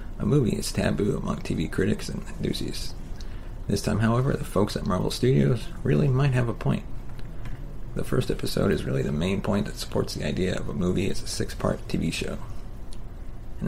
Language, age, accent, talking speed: English, 30-49, American, 190 wpm